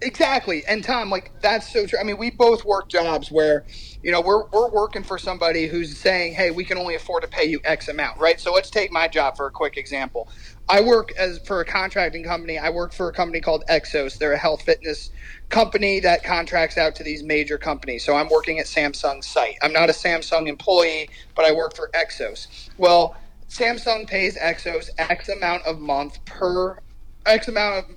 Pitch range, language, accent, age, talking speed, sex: 150-195 Hz, English, American, 30-49, 205 wpm, male